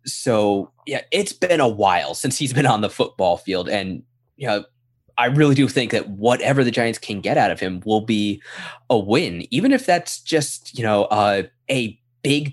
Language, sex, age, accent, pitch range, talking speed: English, male, 20-39, American, 105-130 Hz, 200 wpm